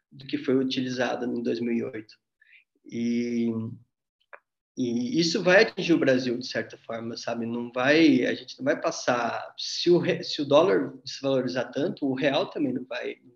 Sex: male